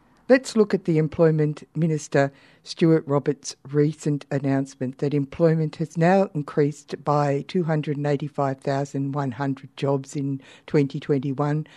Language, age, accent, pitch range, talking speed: English, 60-79, Australian, 140-165 Hz, 100 wpm